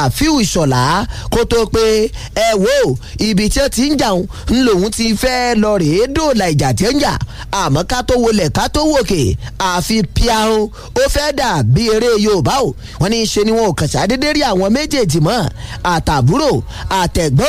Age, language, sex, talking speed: 30-49, English, male, 140 wpm